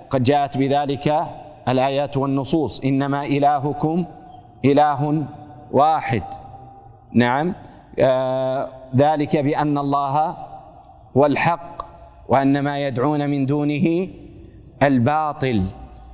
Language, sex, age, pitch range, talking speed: Arabic, male, 40-59, 135-165 Hz, 80 wpm